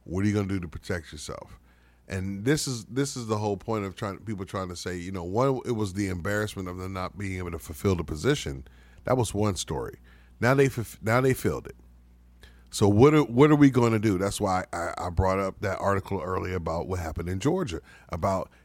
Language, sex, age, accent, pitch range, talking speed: English, male, 40-59, American, 90-135 Hz, 235 wpm